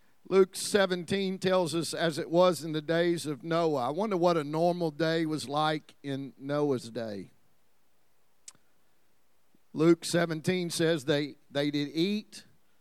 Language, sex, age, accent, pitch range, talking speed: English, male, 50-69, American, 145-180 Hz, 140 wpm